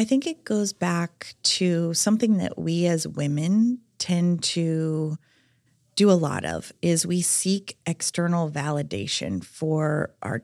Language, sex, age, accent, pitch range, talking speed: English, female, 30-49, American, 150-185 Hz, 140 wpm